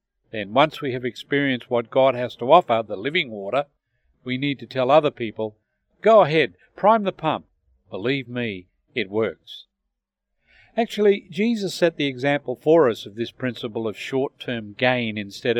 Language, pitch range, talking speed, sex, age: English, 115-155 Hz, 160 wpm, male, 50-69